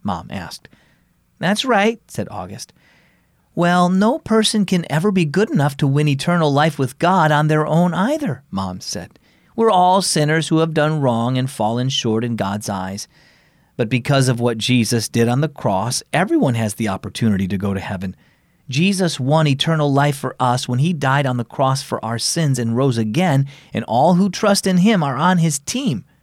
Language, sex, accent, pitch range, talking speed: English, male, American, 125-175 Hz, 190 wpm